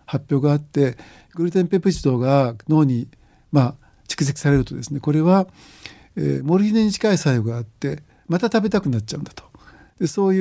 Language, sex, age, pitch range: Japanese, male, 60-79, 130-180 Hz